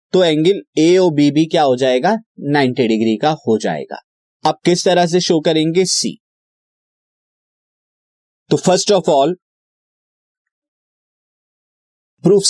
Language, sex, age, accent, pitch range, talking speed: Hindi, male, 30-49, native, 145-195 Hz, 120 wpm